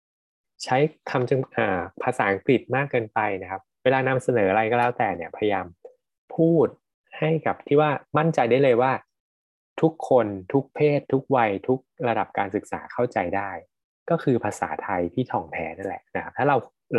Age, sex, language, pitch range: 20-39, male, Thai, 110-150 Hz